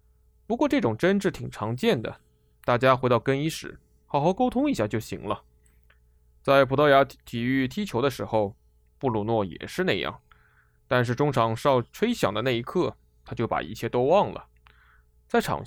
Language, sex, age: Chinese, male, 20-39